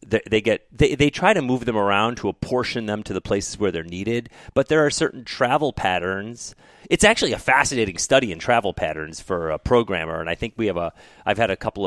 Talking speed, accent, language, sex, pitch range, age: 230 wpm, American, English, male, 95-120 Hz, 30-49